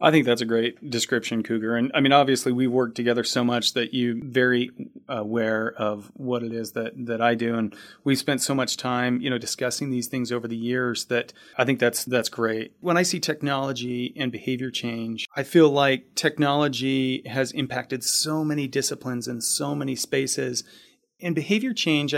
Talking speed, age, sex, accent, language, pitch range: 190 wpm, 30-49, male, American, English, 125-150 Hz